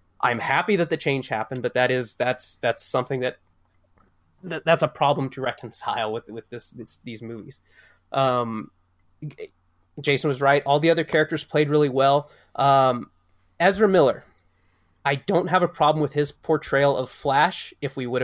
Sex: male